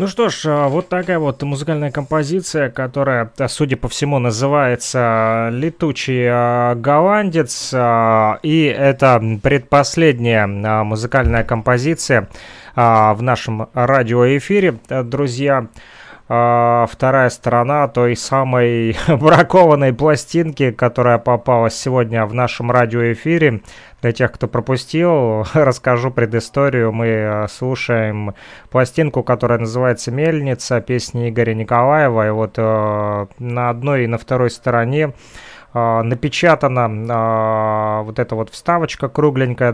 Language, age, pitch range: Russian, 20-39, 115-140 Hz